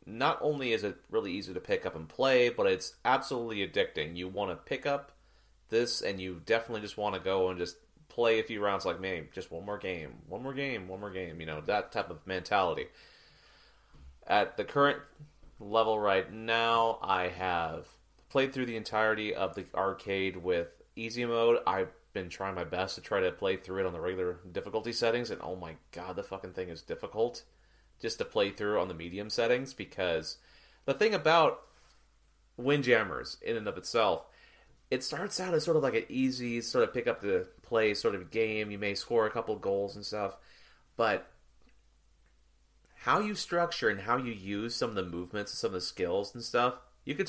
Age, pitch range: 30-49, 95-140 Hz